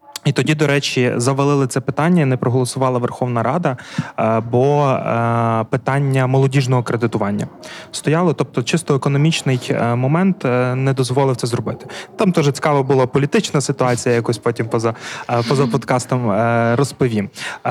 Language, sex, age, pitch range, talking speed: Ukrainian, male, 20-39, 125-150 Hz, 120 wpm